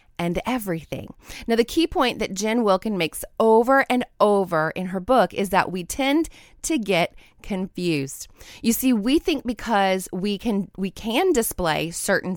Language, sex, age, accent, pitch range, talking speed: English, female, 30-49, American, 180-245 Hz, 165 wpm